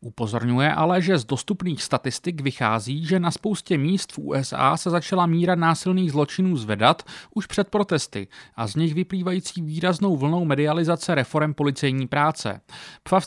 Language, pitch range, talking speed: Czech, 135-180 Hz, 150 wpm